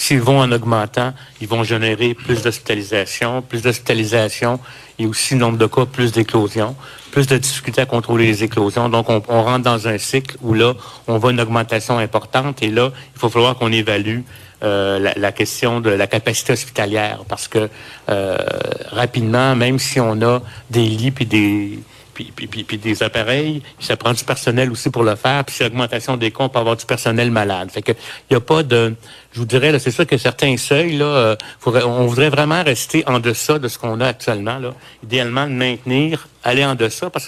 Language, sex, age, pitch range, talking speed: French, male, 60-79, 115-130 Hz, 205 wpm